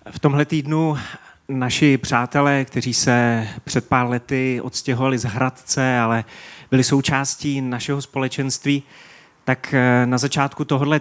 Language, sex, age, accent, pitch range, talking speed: Czech, male, 30-49, native, 125-150 Hz, 120 wpm